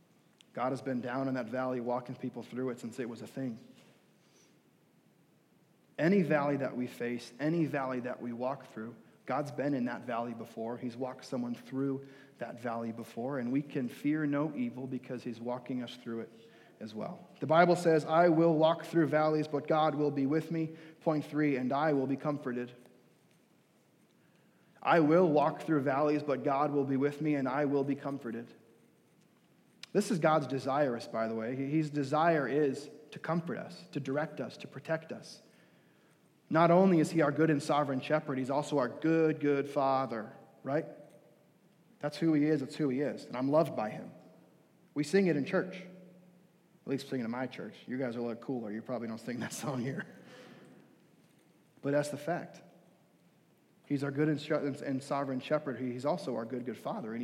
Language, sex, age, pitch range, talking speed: English, male, 30-49, 125-155 Hz, 190 wpm